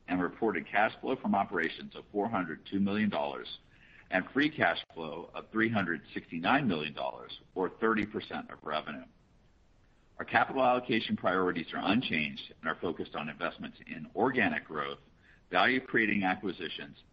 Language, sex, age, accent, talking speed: English, male, 50-69, American, 135 wpm